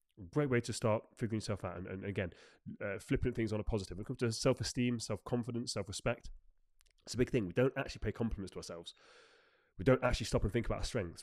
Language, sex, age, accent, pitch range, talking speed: English, male, 30-49, British, 100-125 Hz, 225 wpm